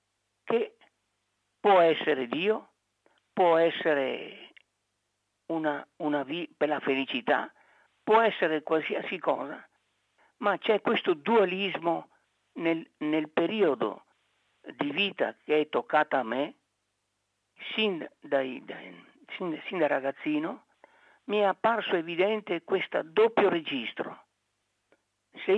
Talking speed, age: 105 wpm, 60-79